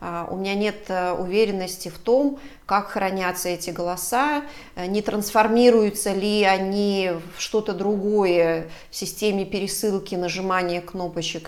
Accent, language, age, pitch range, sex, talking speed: native, Russian, 30-49, 175-215 Hz, female, 115 wpm